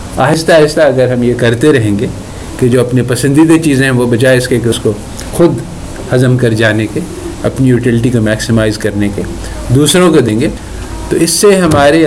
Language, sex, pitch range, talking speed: Urdu, male, 110-150 Hz, 200 wpm